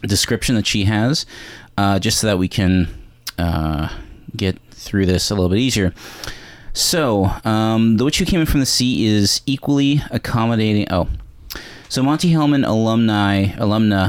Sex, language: male, English